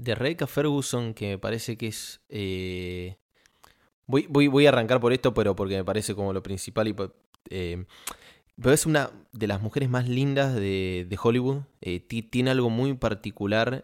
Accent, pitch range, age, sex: Argentinian, 95-125 Hz, 20-39, male